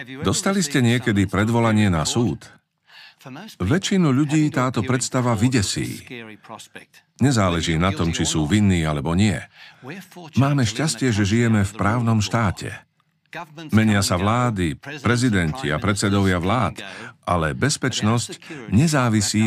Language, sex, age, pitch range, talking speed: Slovak, male, 50-69, 100-130 Hz, 110 wpm